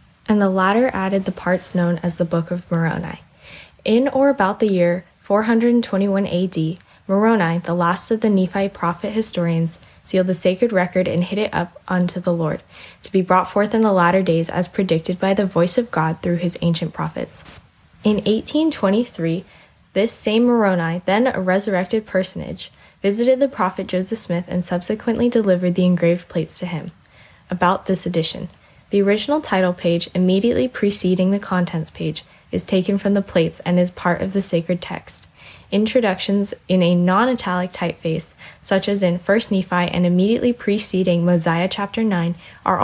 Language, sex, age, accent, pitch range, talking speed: English, female, 10-29, American, 170-205 Hz, 170 wpm